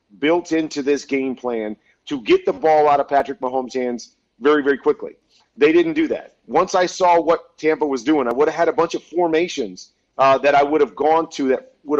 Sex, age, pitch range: male, 40-59, 135-170 Hz